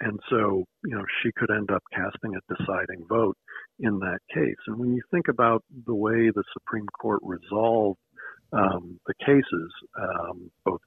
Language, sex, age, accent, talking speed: English, male, 50-69, American, 170 wpm